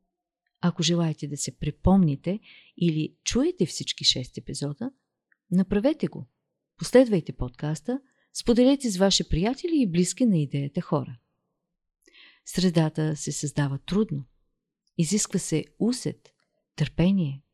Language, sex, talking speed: Bulgarian, female, 105 wpm